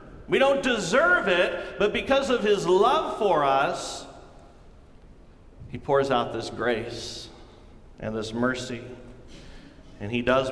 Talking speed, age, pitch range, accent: 125 wpm, 40-59, 110-175 Hz, American